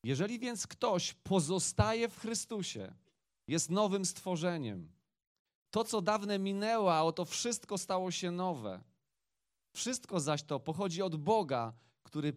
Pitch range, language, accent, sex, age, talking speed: 120-170 Hz, Polish, native, male, 30-49, 125 wpm